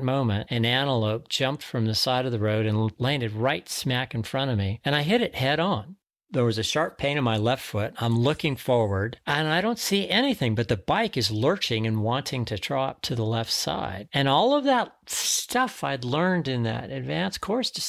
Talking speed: 220 wpm